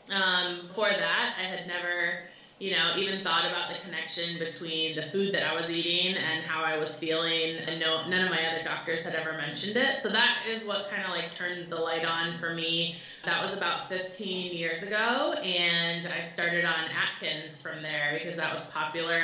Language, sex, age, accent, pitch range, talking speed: English, female, 20-39, American, 160-185 Hz, 205 wpm